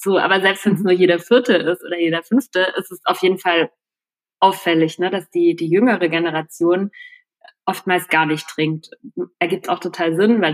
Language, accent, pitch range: German, German, 170-200 Hz